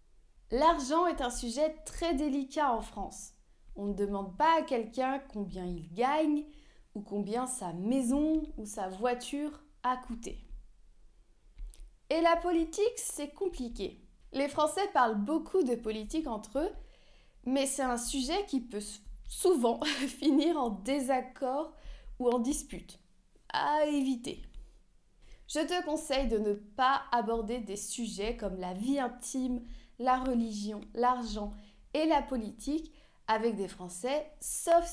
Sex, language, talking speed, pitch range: female, French, 130 wpm, 220-300 Hz